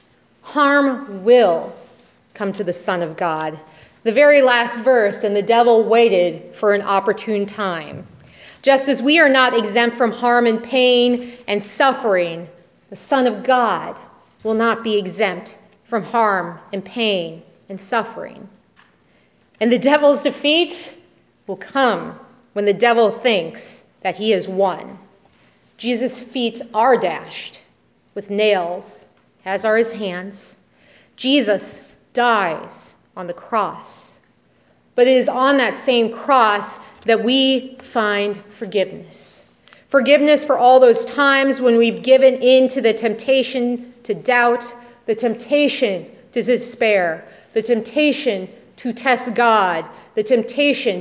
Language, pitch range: English, 200-255 Hz